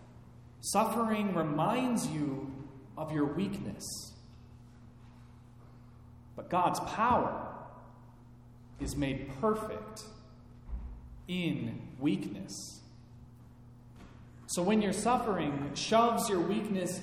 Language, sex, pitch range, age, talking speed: English, male, 120-185 Hz, 30-49, 75 wpm